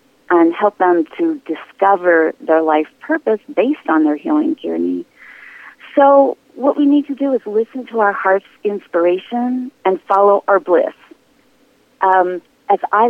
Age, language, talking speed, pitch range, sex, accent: 40-59, English, 145 wpm, 180-290 Hz, female, American